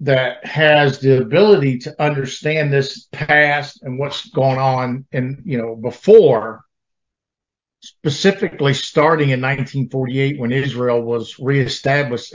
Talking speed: 115 wpm